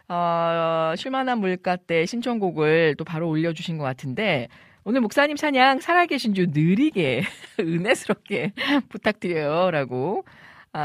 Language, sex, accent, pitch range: Korean, female, native, 160-220 Hz